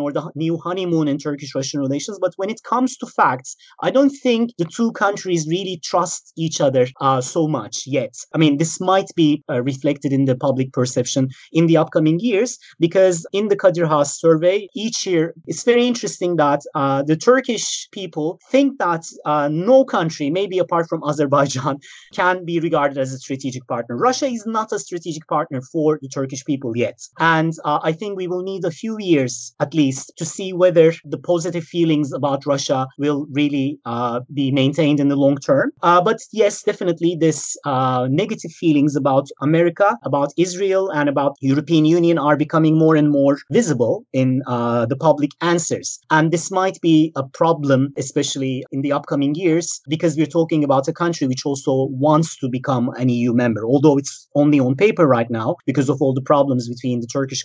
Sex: male